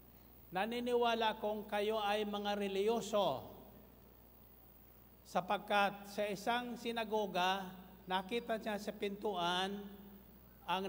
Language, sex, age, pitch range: Filipino, male, 50-69, 185-215 Hz